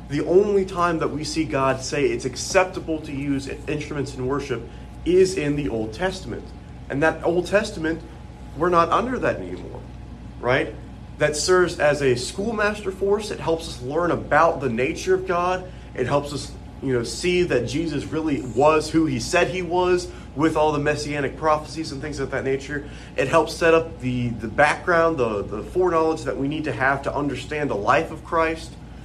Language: English